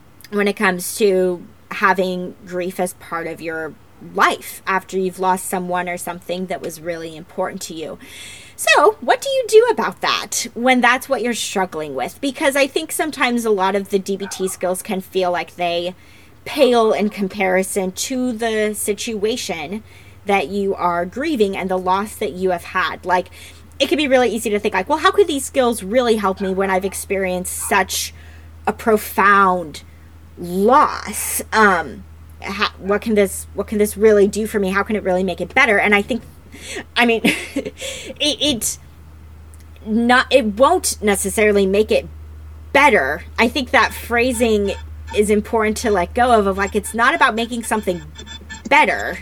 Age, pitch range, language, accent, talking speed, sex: 20-39, 180-235 Hz, English, American, 175 wpm, female